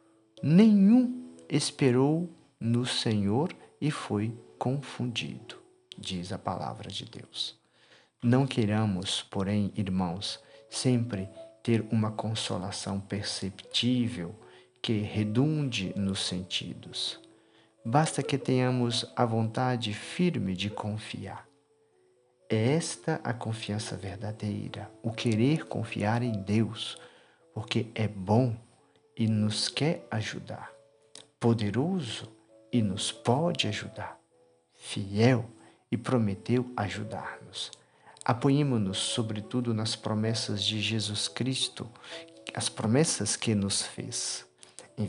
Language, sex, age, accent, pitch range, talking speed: Portuguese, male, 50-69, Brazilian, 105-125 Hz, 95 wpm